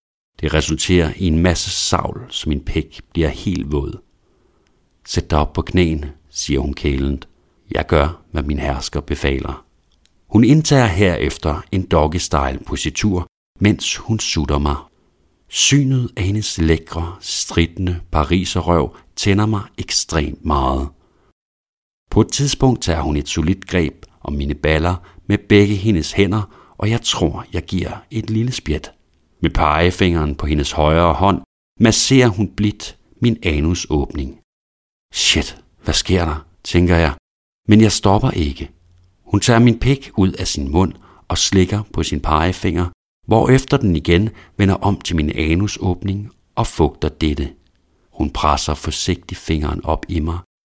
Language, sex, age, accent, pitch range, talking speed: Danish, male, 60-79, native, 75-100 Hz, 145 wpm